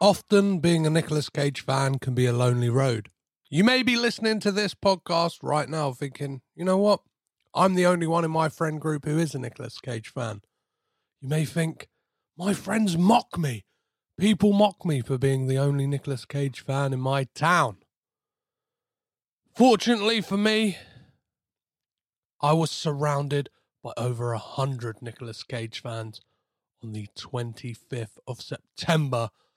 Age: 30-49